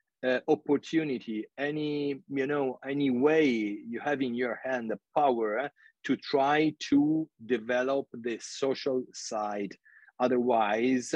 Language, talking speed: English, 120 wpm